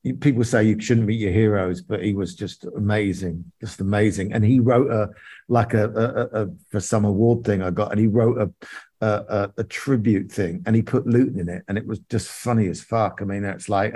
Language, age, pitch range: English, 50-69, 100-115 Hz